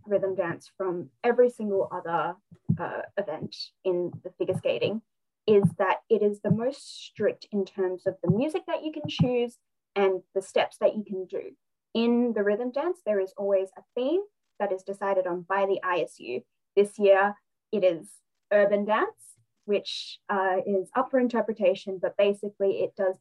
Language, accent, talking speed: English, Australian, 170 wpm